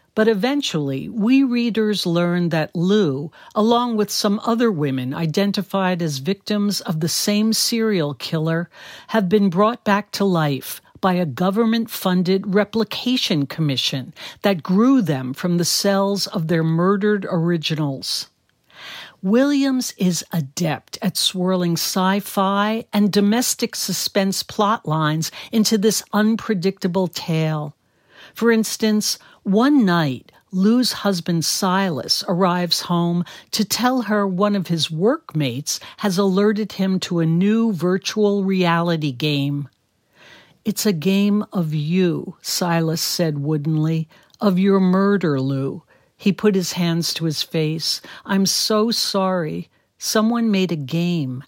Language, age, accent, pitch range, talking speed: English, 60-79, American, 165-210 Hz, 125 wpm